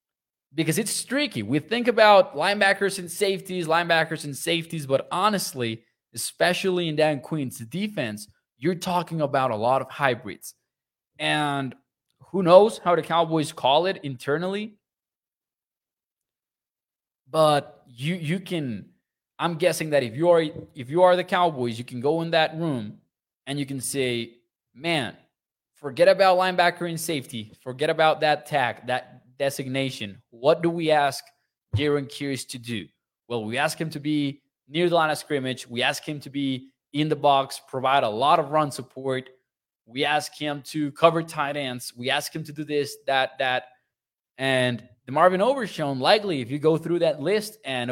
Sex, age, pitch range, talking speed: male, 20-39, 130-165 Hz, 165 wpm